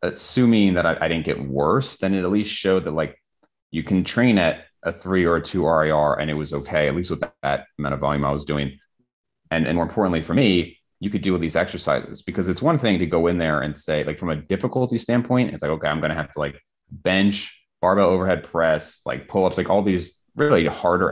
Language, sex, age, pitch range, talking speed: English, male, 30-49, 75-95 Hz, 245 wpm